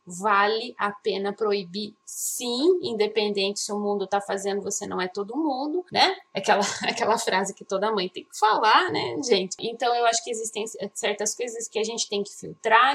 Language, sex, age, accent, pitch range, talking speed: Portuguese, female, 20-39, Brazilian, 210-285 Hz, 190 wpm